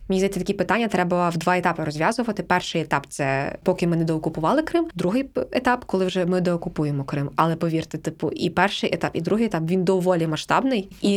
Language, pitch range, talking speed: Ukrainian, 175-205 Hz, 215 wpm